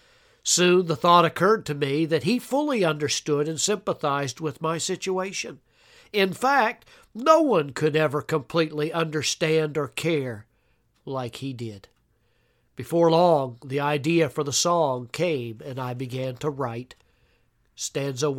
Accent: American